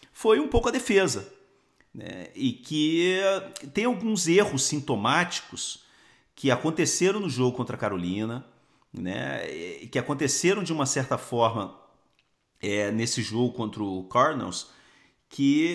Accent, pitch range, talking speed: Brazilian, 115-180 Hz, 120 wpm